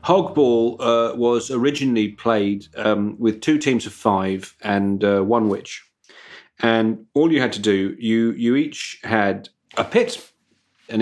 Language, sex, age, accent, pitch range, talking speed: English, male, 40-59, British, 110-140 Hz, 145 wpm